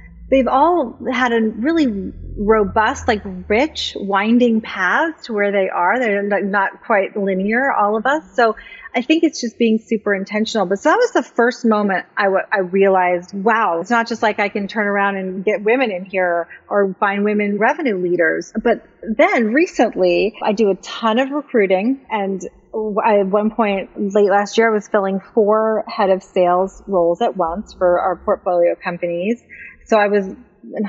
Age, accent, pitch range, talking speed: 30-49, American, 185-230 Hz, 175 wpm